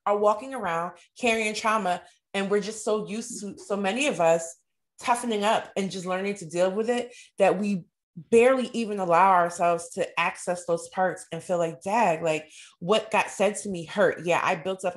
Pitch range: 170-200 Hz